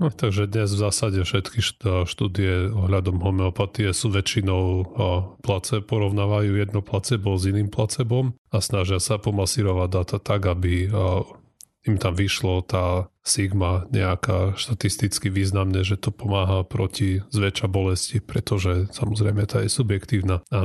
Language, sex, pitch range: Slovak, male, 95-110 Hz